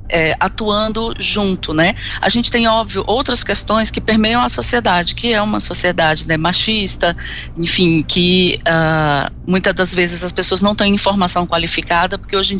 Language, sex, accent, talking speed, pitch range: Portuguese, female, Brazilian, 155 wpm, 170-210 Hz